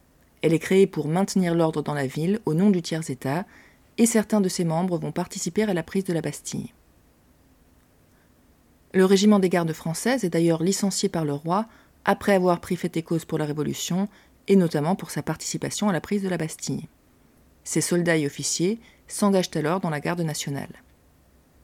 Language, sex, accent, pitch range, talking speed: French, female, French, 155-195 Hz, 185 wpm